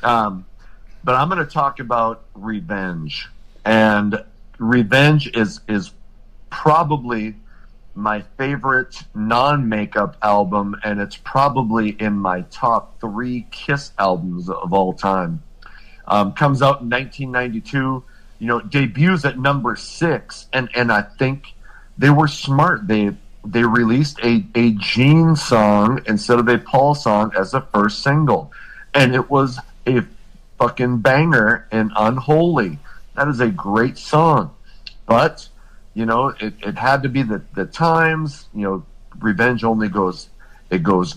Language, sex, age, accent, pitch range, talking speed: English, male, 50-69, American, 105-130 Hz, 135 wpm